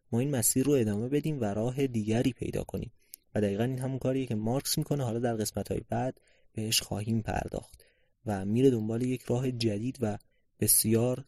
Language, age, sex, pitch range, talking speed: Persian, 30-49, male, 105-130 Hz, 185 wpm